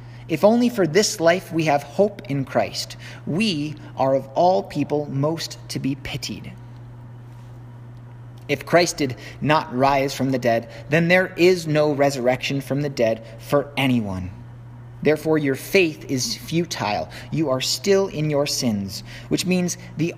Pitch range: 120-155 Hz